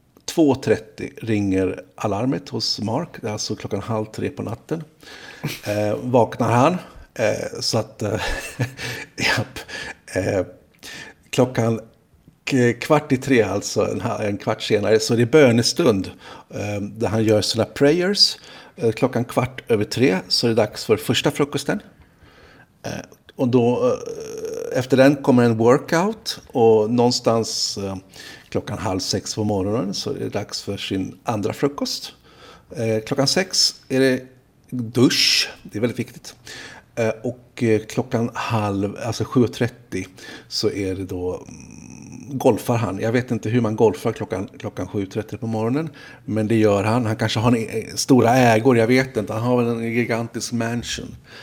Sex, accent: male, native